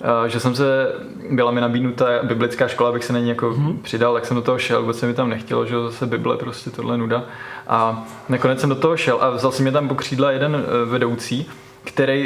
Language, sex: Czech, male